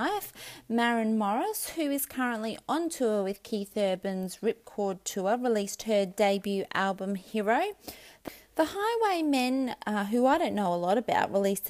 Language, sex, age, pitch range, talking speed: English, female, 30-49, 195-250 Hz, 140 wpm